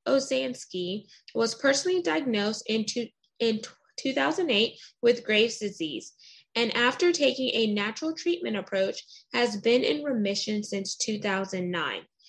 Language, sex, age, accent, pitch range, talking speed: English, female, 20-39, American, 200-245 Hz, 110 wpm